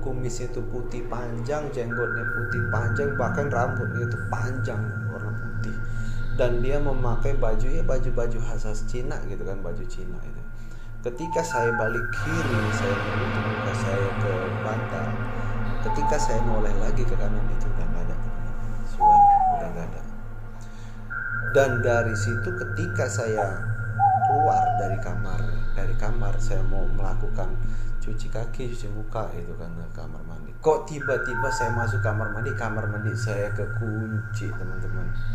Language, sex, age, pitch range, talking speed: Malay, male, 30-49, 110-120 Hz, 135 wpm